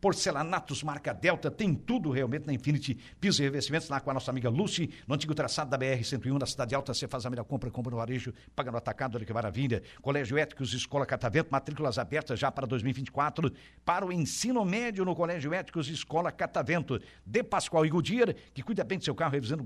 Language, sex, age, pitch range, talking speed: Portuguese, male, 60-79, 130-175 Hz, 210 wpm